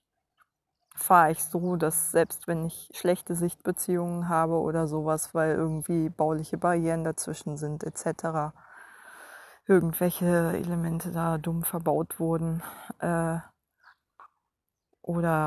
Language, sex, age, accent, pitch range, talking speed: German, female, 20-39, German, 160-185 Hz, 105 wpm